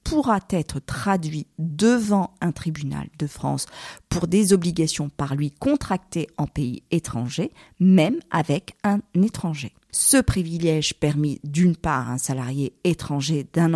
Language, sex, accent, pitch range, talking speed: French, female, French, 150-205 Hz, 135 wpm